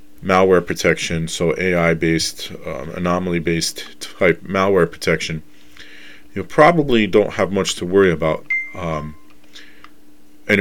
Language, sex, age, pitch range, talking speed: English, male, 30-49, 80-100 Hz, 120 wpm